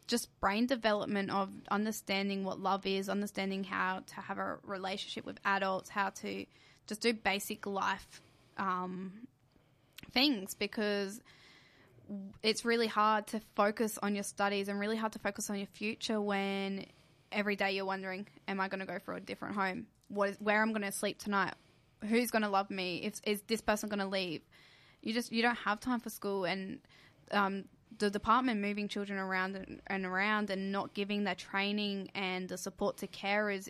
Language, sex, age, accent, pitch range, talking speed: English, female, 10-29, Australian, 195-215 Hz, 180 wpm